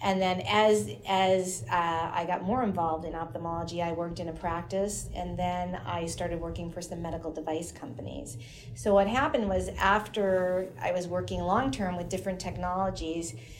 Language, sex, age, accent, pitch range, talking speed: English, female, 30-49, American, 170-200 Hz, 170 wpm